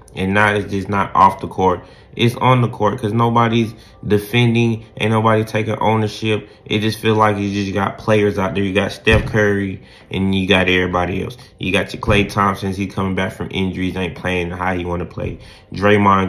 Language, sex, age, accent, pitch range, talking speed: English, male, 20-39, American, 95-120 Hz, 205 wpm